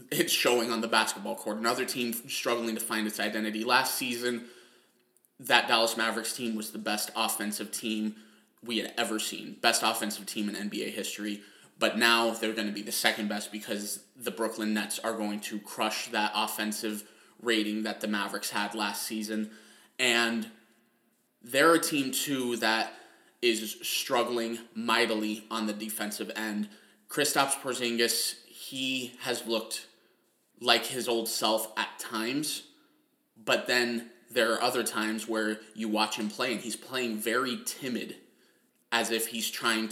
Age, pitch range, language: 20-39, 110-120 Hz, English